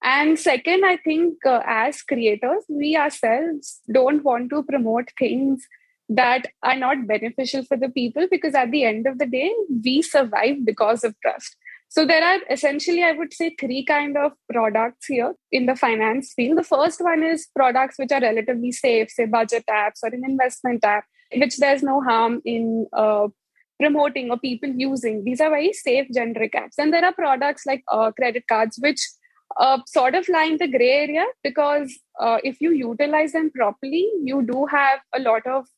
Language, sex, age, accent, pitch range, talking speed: English, female, 20-39, Indian, 240-300 Hz, 185 wpm